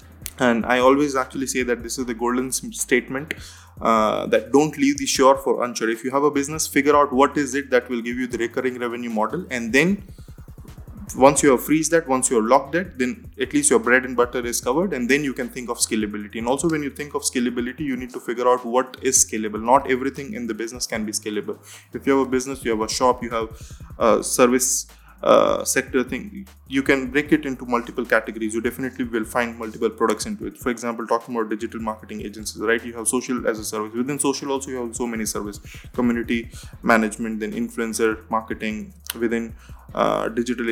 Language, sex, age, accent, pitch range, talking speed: English, male, 20-39, Indian, 110-130 Hz, 220 wpm